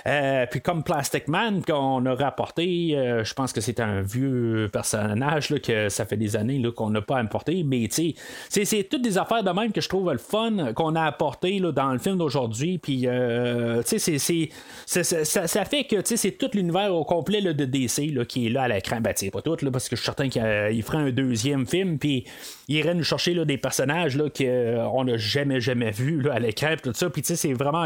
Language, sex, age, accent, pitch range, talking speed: French, male, 30-49, Canadian, 135-200 Hz, 240 wpm